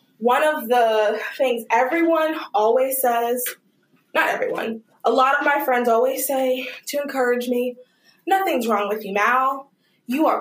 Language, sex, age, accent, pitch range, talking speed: English, female, 20-39, American, 230-320 Hz, 150 wpm